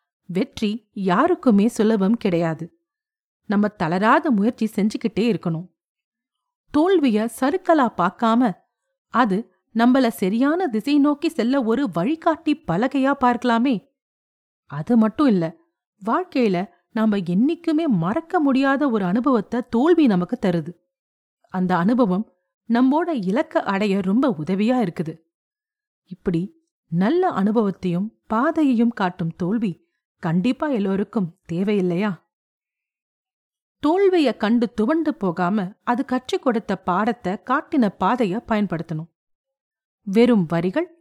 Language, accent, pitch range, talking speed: Tamil, native, 190-280 Hz, 95 wpm